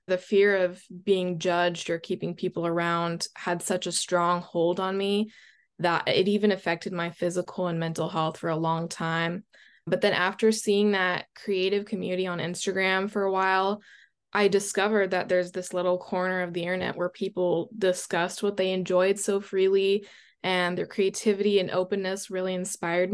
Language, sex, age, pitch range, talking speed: English, female, 20-39, 175-195 Hz, 170 wpm